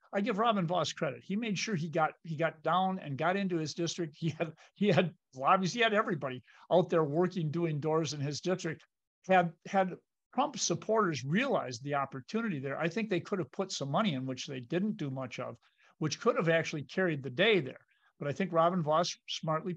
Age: 50-69